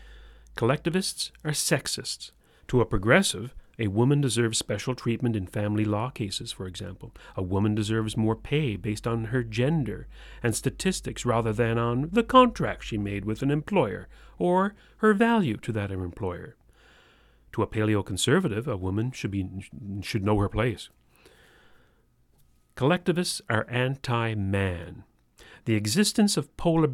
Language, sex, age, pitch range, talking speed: English, male, 40-59, 105-145 Hz, 140 wpm